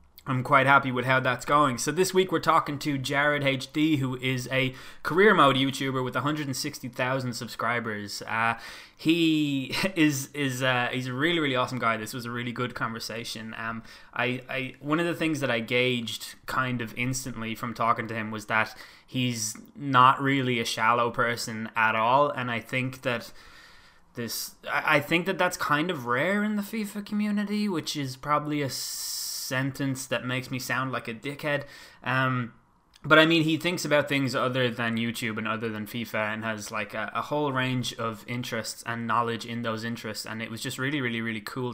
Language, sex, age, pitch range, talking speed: English, male, 20-39, 115-140 Hz, 195 wpm